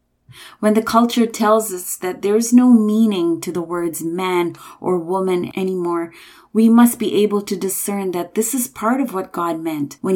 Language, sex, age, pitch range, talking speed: English, female, 30-49, 170-220 Hz, 190 wpm